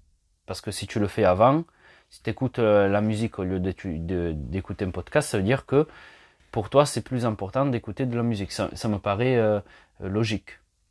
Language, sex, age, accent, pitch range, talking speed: English, male, 30-49, French, 85-120 Hz, 210 wpm